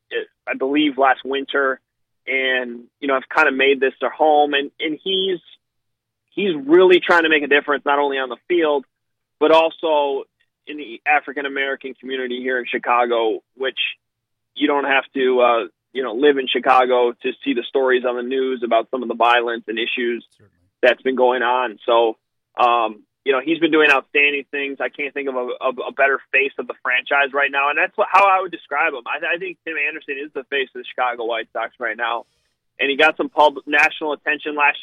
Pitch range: 125-150 Hz